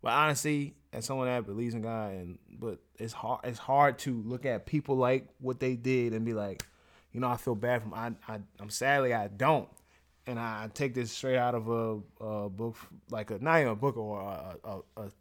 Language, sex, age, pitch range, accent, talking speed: English, male, 20-39, 105-130 Hz, American, 215 wpm